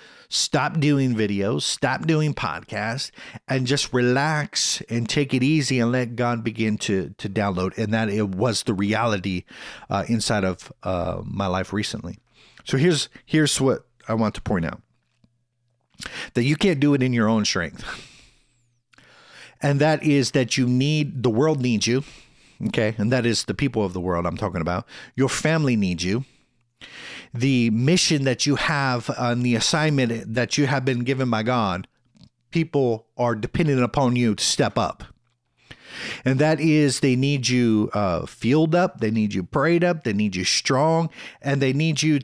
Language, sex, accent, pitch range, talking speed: English, male, American, 110-145 Hz, 175 wpm